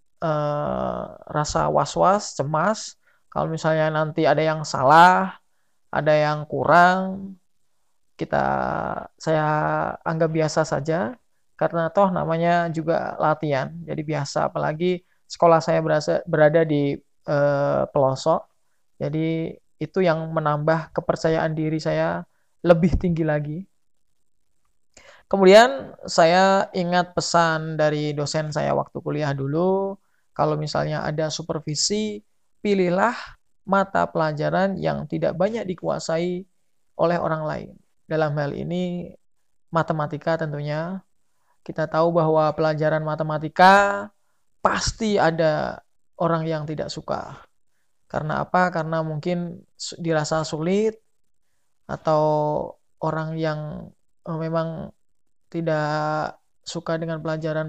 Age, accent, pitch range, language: 20-39, native, 155-180 Hz, Indonesian